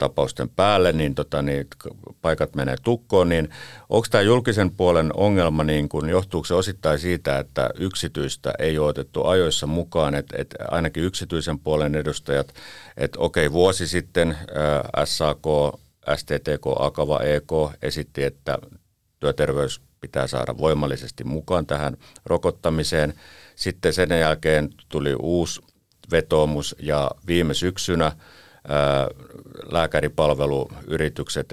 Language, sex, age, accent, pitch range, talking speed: Finnish, male, 50-69, native, 70-90 Hz, 115 wpm